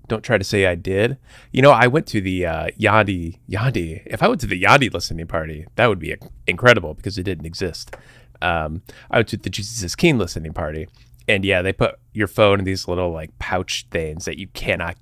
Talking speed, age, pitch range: 225 wpm, 30-49, 90-115 Hz